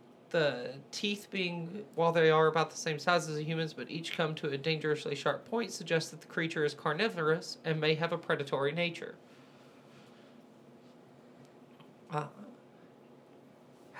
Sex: male